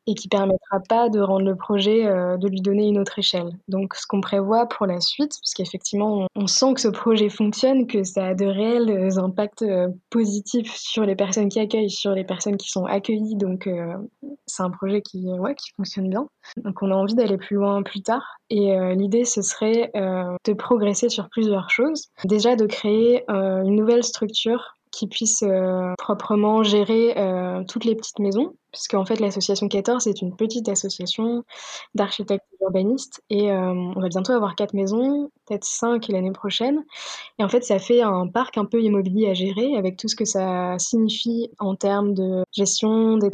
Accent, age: French, 20-39